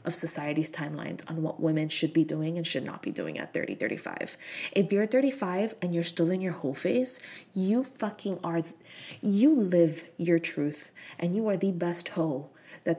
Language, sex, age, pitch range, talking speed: English, female, 20-39, 165-235 Hz, 190 wpm